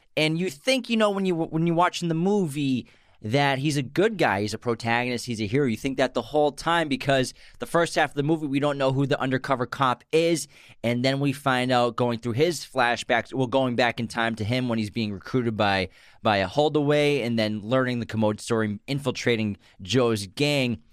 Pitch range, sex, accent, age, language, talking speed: 120-155 Hz, male, American, 20-39, English, 220 wpm